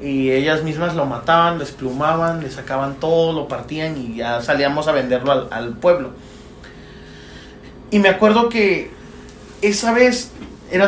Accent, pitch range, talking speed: Mexican, 130-190 Hz, 150 wpm